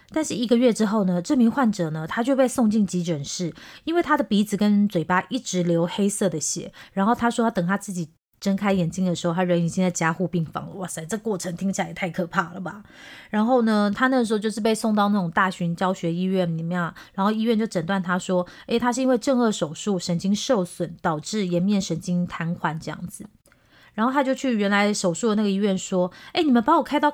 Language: Chinese